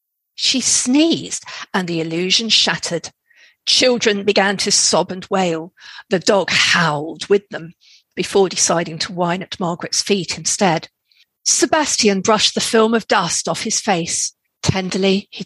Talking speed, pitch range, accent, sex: 140 wpm, 170-225 Hz, British, female